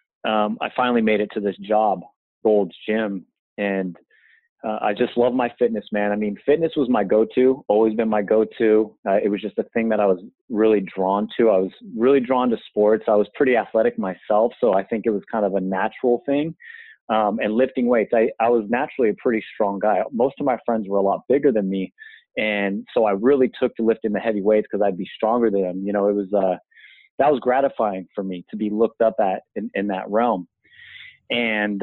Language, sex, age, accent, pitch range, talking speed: English, male, 30-49, American, 100-120 Hz, 220 wpm